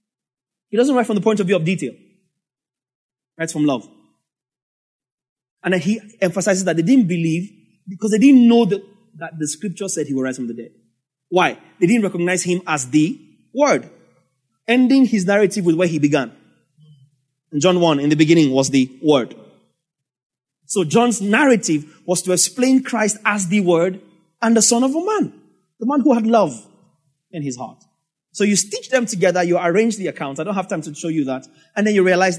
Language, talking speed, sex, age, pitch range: English, 195 wpm, male, 30-49, 145-200 Hz